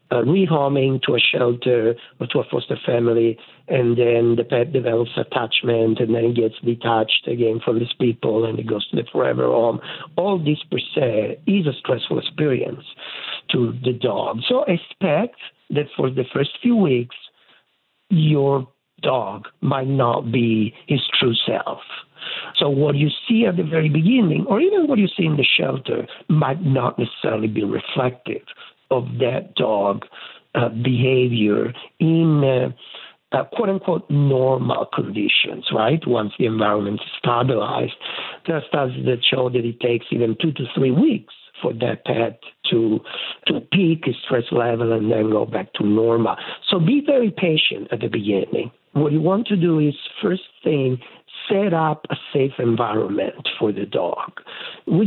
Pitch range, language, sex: 120-165 Hz, English, male